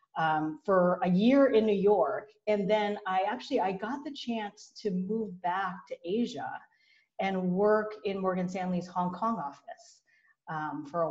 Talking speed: 165 wpm